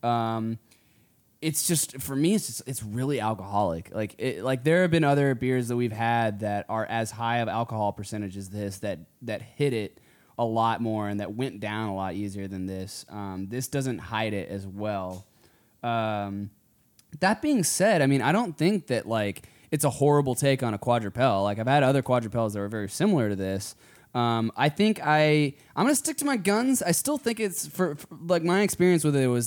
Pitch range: 110-150 Hz